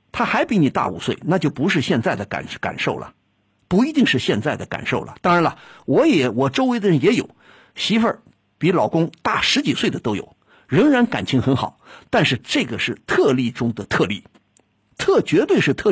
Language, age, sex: Chinese, 50-69, male